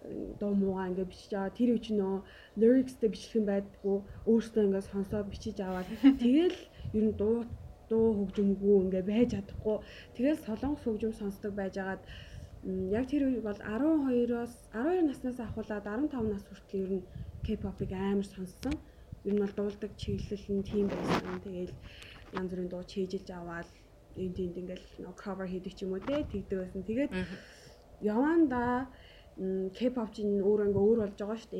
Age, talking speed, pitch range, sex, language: 20-39, 105 wpm, 190-225 Hz, female, Russian